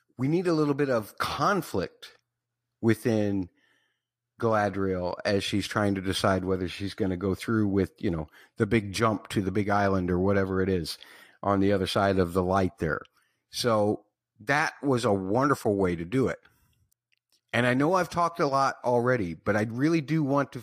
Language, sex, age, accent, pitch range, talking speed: English, male, 50-69, American, 95-125 Hz, 190 wpm